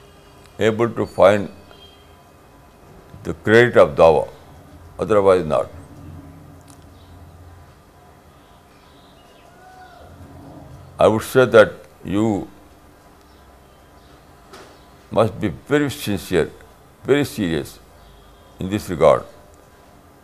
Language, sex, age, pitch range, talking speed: Urdu, male, 60-79, 80-100 Hz, 70 wpm